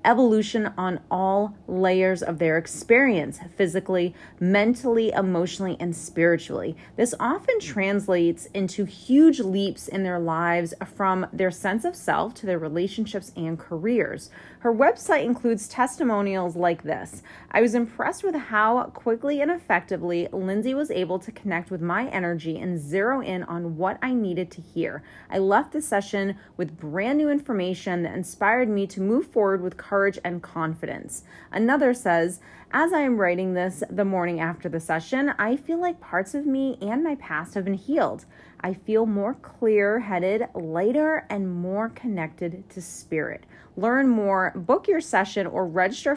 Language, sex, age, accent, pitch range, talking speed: English, female, 30-49, American, 175-235 Hz, 160 wpm